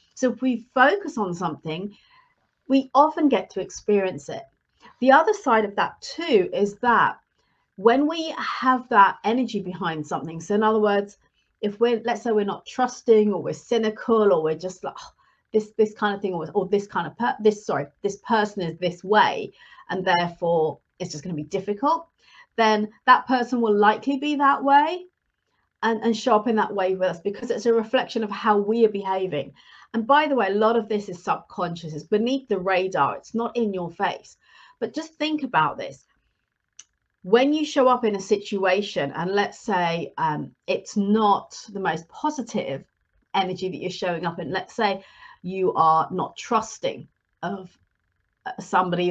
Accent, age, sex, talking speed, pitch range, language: British, 40-59, female, 185 wpm, 185-240 Hz, English